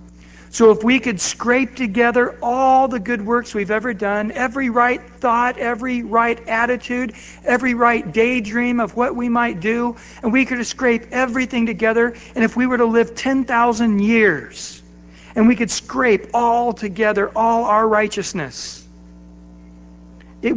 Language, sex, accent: English, male, American